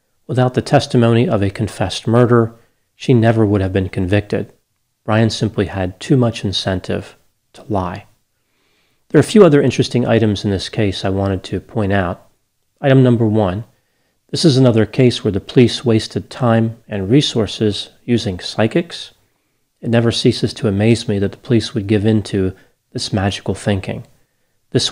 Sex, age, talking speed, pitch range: male, 40-59, 165 wpm, 100-125 Hz